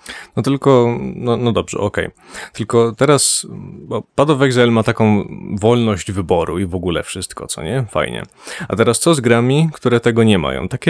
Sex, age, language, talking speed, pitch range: male, 20-39, Polish, 180 wpm, 95-120 Hz